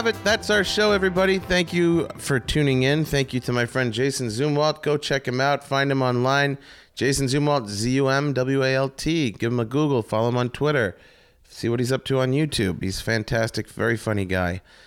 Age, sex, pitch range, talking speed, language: 30-49, male, 100-135 Hz, 190 wpm, English